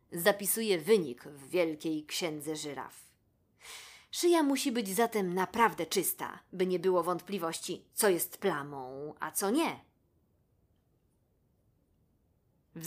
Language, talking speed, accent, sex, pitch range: Polish, 105 wpm, native, female, 170-220 Hz